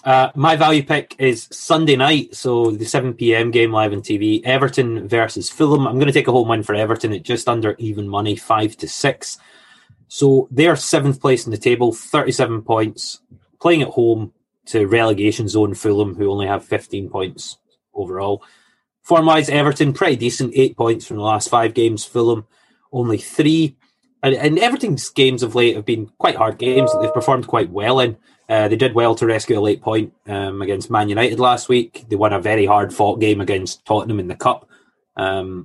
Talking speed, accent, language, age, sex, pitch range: 195 wpm, British, English, 20-39, male, 105-140 Hz